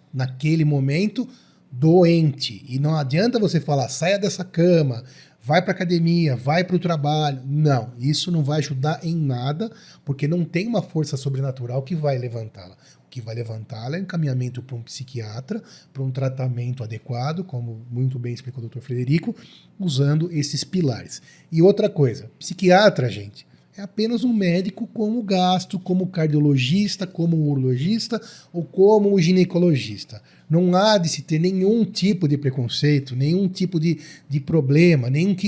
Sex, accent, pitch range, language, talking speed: male, Brazilian, 135-180 Hz, Portuguese, 155 wpm